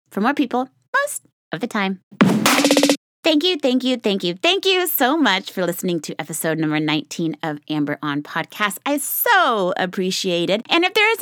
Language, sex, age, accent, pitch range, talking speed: English, female, 30-49, American, 170-255 Hz, 185 wpm